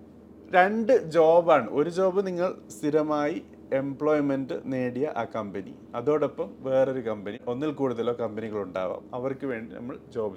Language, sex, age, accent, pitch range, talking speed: Malayalam, male, 30-49, native, 130-165 Hz, 115 wpm